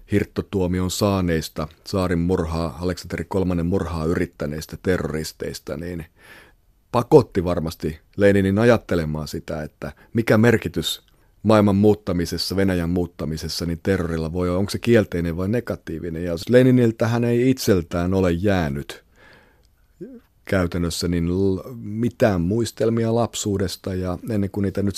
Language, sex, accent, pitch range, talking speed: Finnish, male, native, 85-105 Hz, 115 wpm